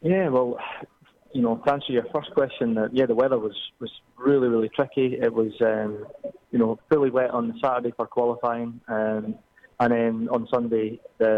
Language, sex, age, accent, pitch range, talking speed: English, male, 20-39, British, 115-140 Hz, 185 wpm